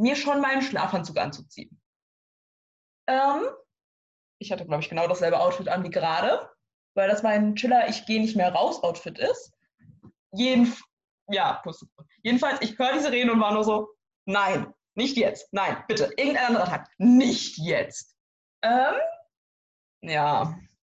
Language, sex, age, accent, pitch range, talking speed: German, female, 20-39, German, 205-260 Hz, 145 wpm